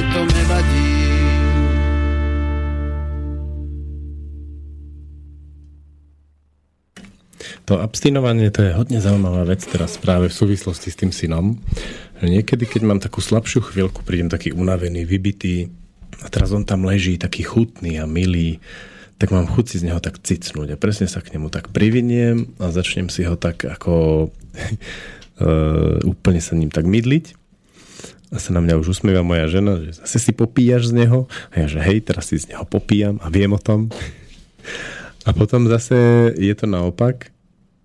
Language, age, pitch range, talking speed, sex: Slovak, 40-59, 80-105 Hz, 145 wpm, male